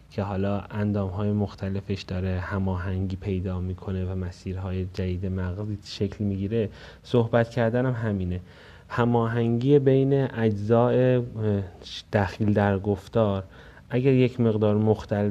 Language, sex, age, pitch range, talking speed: Persian, male, 30-49, 95-115 Hz, 115 wpm